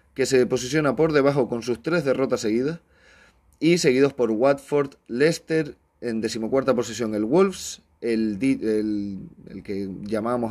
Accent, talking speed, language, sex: Spanish, 145 wpm, Spanish, male